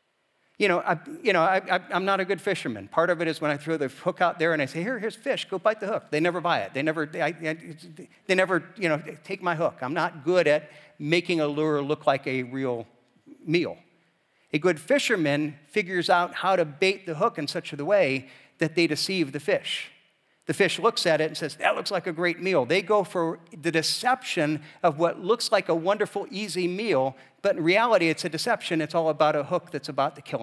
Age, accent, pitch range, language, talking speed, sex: 50-69, American, 150-190 Hz, English, 235 wpm, male